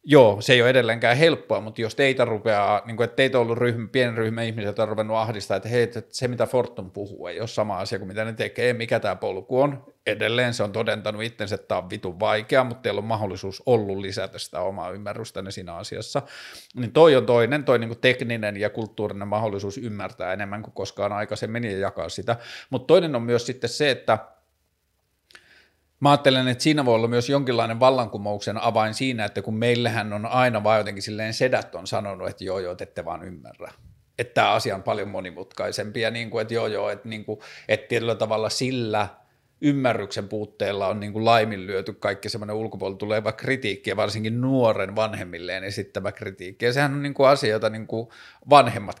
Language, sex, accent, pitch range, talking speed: Finnish, male, native, 105-120 Hz, 190 wpm